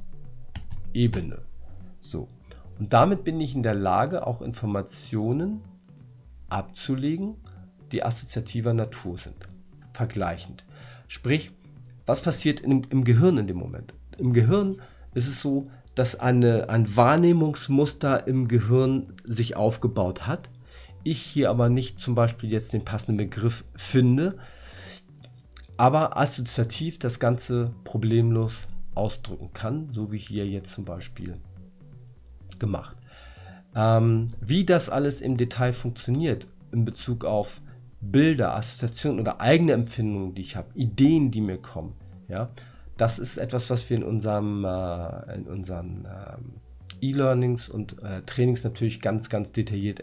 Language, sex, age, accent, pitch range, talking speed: German, male, 50-69, German, 95-130 Hz, 130 wpm